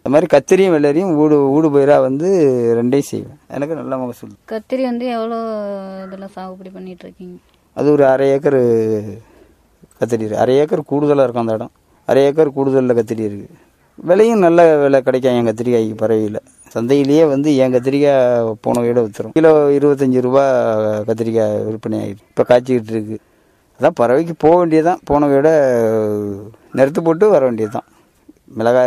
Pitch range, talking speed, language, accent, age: 120-160 Hz, 135 wpm, Tamil, native, 20-39